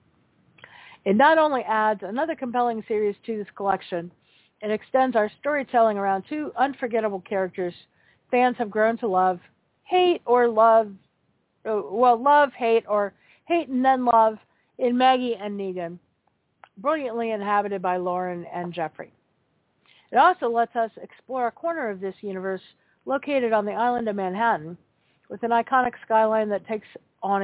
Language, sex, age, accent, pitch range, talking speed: English, female, 50-69, American, 175-235 Hz, 145 wpm